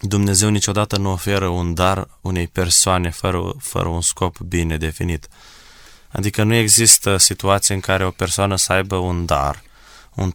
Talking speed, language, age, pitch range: 155 wpm, Romanian, 20-39, 90-105 Hz